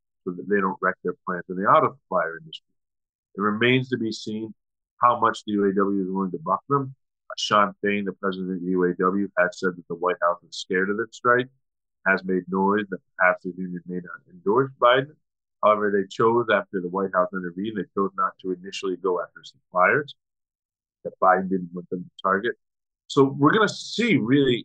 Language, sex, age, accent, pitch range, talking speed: English, male, 30-49, American, 90-110 Hz, 205 wpm